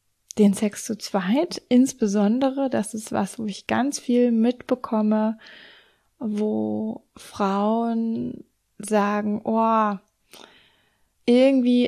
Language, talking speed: German, 90 wpm